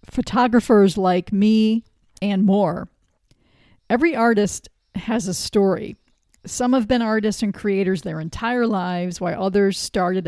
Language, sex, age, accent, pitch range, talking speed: English, female, 50-69, American, 185-220 Hz, 130 wpm